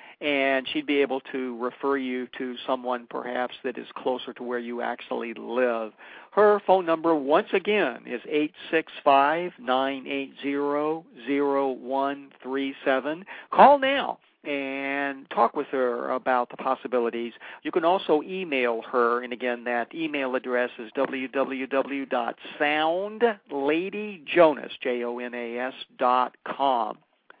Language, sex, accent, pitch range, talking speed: English, male, American, 130-180 Hz, 100 wpm